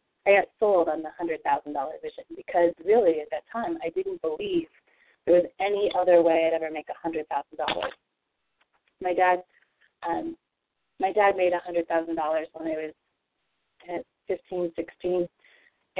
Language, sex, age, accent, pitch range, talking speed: English, female, 30-49, American, 165-205 Hz, 175 wpm